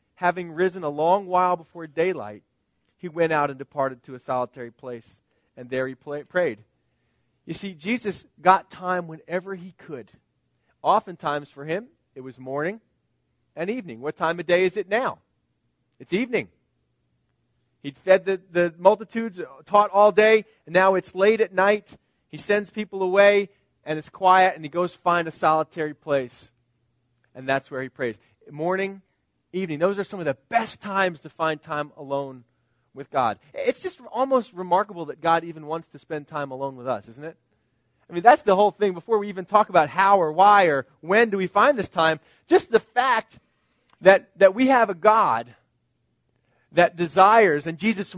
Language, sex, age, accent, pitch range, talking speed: English, male, 40-59, American, 145-200 Hz, 180 wpm